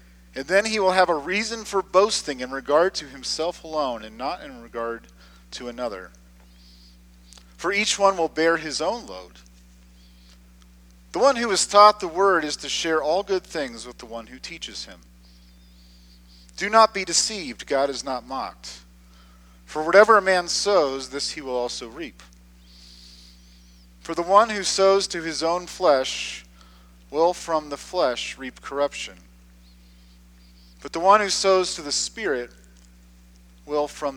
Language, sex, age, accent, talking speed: English, male, 40-59, American, 160 wpm